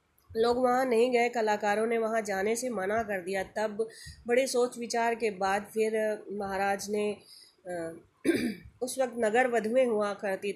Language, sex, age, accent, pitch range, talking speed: Hindi, female, 20-39, native, 190-230 Hz, 155 wpm